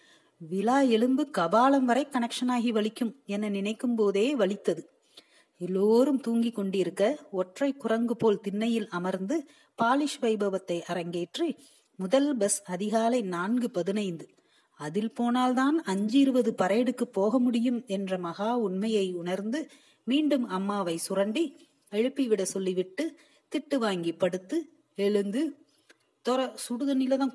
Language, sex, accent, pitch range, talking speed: Tamil, female, native, 200-265 Hz, 95 wpm